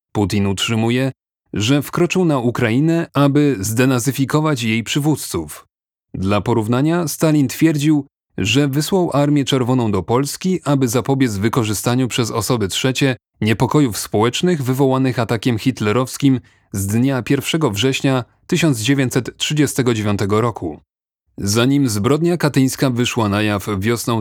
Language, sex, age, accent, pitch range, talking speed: Polish, male, 30-49, native, 115-140 Hz, 110 wpm